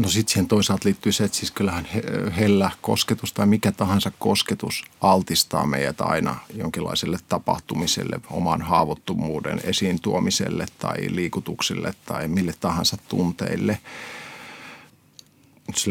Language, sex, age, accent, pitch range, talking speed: Finnish, male, 50-69, native, 95-110 Hz, 115 wpm